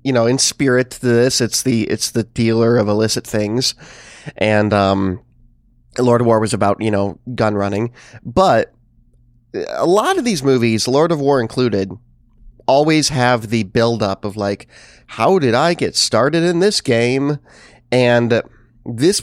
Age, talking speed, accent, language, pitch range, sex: 30-49, 160 wpm, American, English, 110-145 Hz, male